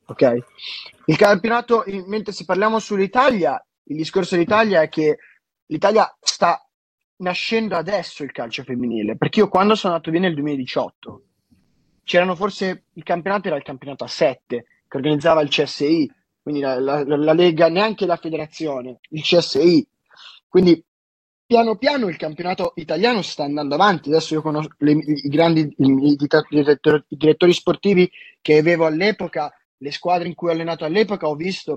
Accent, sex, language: native, male, Italian